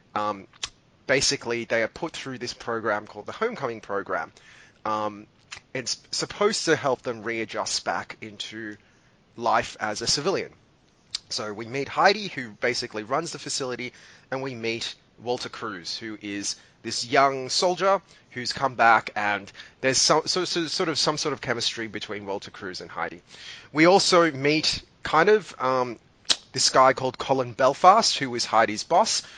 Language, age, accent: English, 20-39, Australian